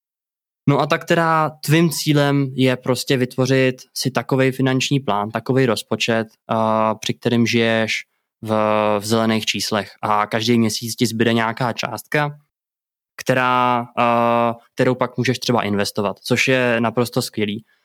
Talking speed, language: 140 wpm, Czech